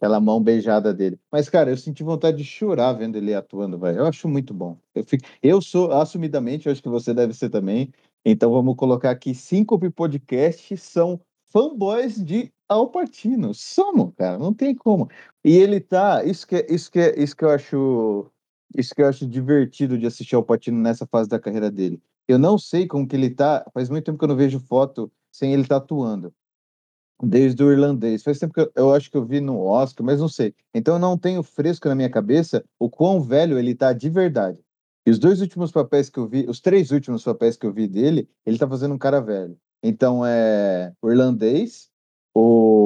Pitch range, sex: 115-165 Hz, male